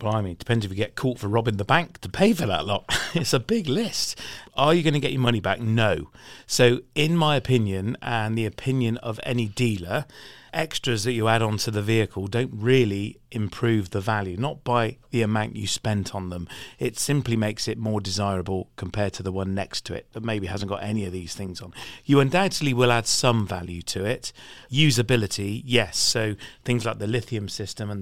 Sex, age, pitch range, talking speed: male, 40-59, 100-125 Hz, 210 wpm